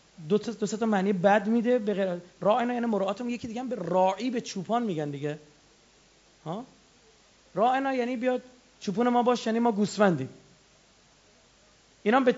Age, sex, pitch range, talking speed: 30-49, male, 195-285 Hz, 150 wpm